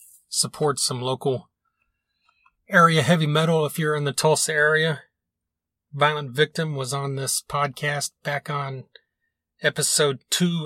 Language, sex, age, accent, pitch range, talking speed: English, male, 30-49, American, 125-150 Hz, 125 wpm